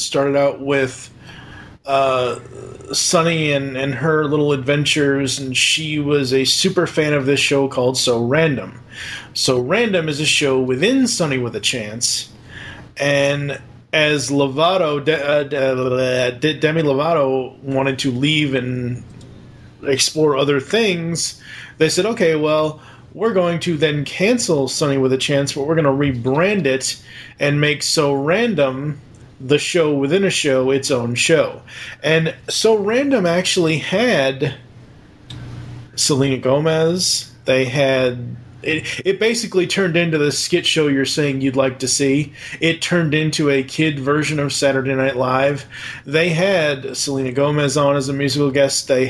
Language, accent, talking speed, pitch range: English, American, 145 wpm, 130-155 Hz